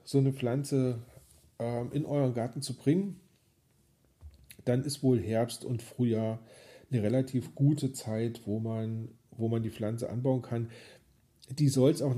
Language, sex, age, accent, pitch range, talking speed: German, male, 40-59, German, 105-130 Hz, 150 wpm